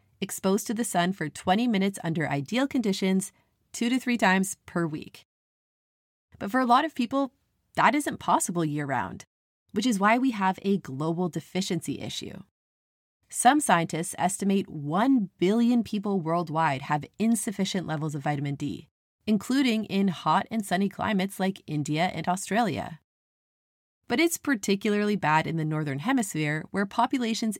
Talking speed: 150 wpm